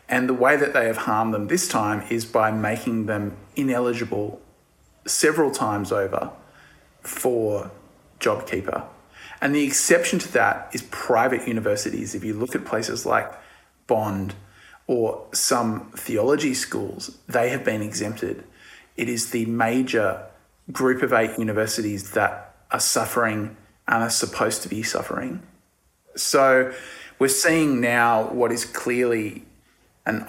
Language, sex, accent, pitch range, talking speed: English, male, Australian, 110-120 Hz, 135 wpm